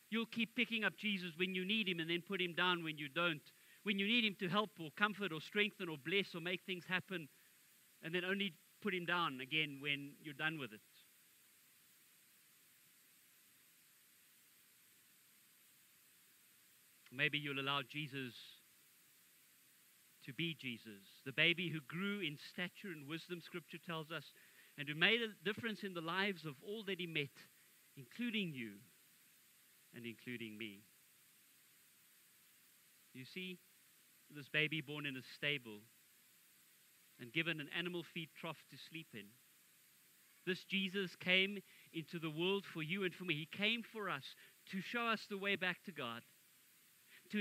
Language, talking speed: English, 155 wpm